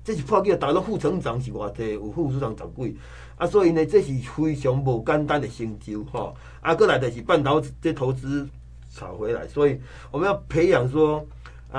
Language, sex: Chinese, male